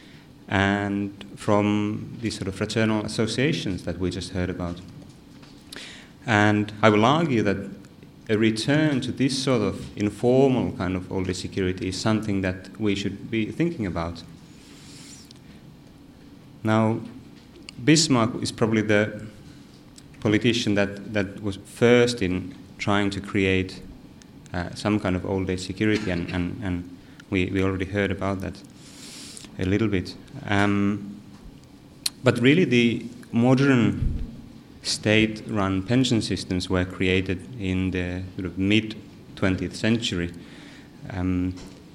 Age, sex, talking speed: 30-49, male, 120 wpm